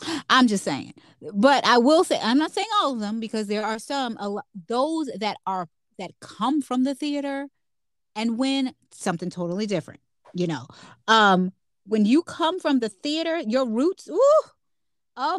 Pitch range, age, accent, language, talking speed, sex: 190-270 Hz, 30-49, American, English, 165 wpm, female